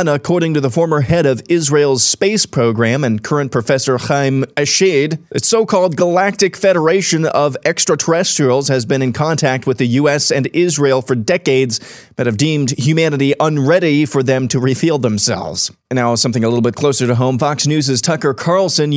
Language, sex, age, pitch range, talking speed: English, male, 30-49, 130-165 Hz, 170 wpm